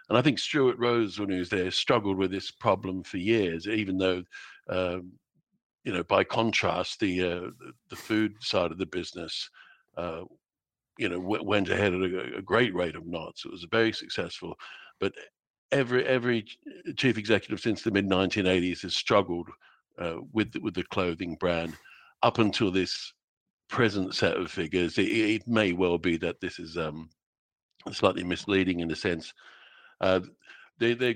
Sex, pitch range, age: male, 90-110 Hz, 60-79